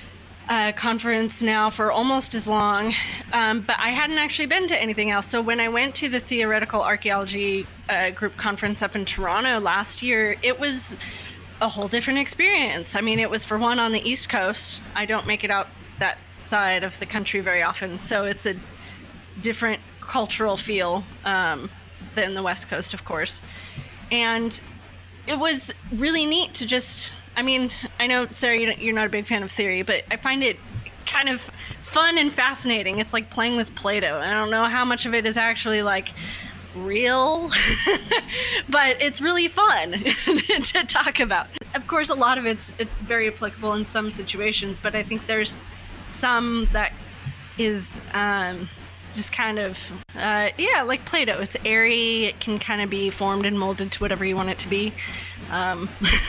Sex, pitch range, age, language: female, 200-235 Hz, 20-39, English